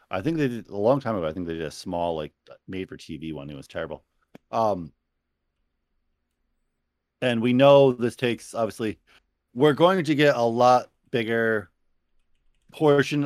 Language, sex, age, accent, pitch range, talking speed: English, male, 30-49, American, 80-115 Hz, 165 wpm